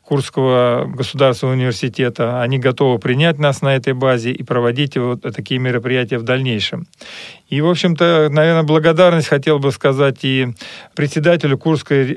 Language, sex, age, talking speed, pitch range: Russian, male, 40-59, 140 wpm, 130-155 Hz